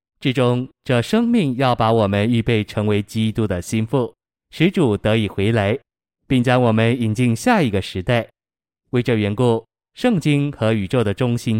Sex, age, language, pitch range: male, 20-39, Chinese, 105-130 Hz